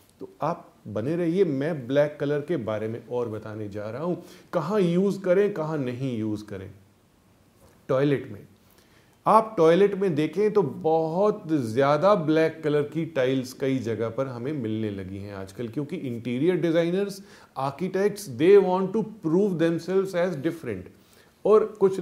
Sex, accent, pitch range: male, native, 120-180 Hz